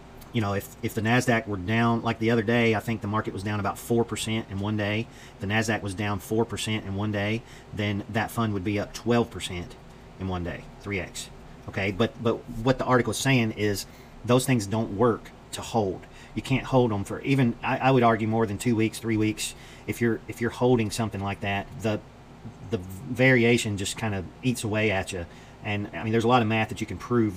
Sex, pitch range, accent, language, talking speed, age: male, 100-120 Hz, American, English, 235 wpm, 40-59